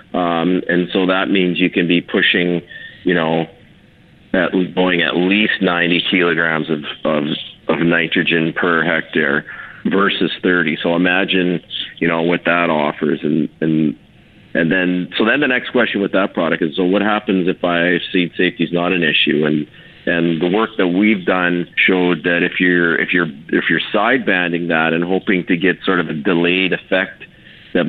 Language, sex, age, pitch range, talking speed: English, male, 40-59, 80-90 Hz, 180 wpm